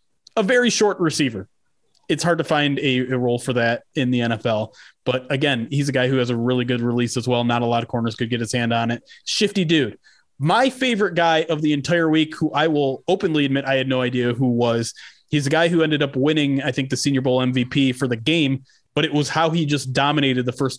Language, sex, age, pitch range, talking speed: English, male, 20-39, 120-150 Hz, 245 wpm